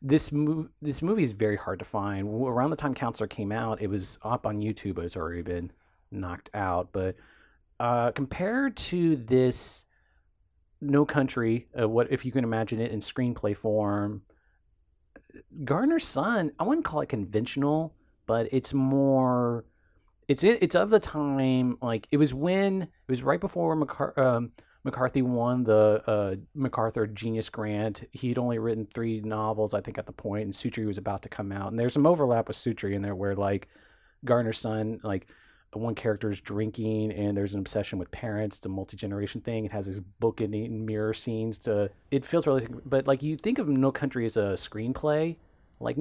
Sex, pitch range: male, 100-135 Hz